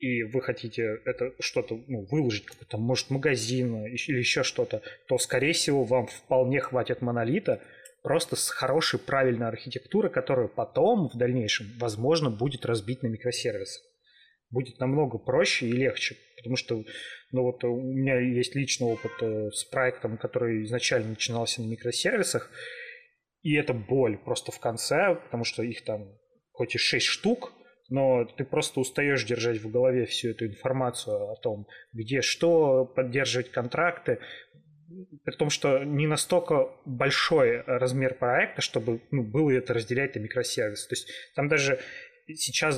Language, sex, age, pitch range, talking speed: Russian, male, 20-39, 120-150 Hz, 145 wpm